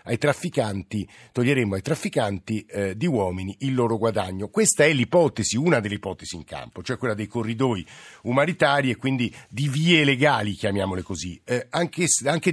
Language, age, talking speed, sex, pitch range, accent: Italian, 50-69, 165 wpm, male, 115-180 Hz, native